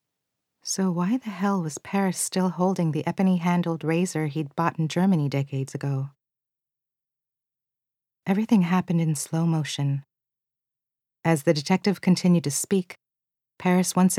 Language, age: English, 40-59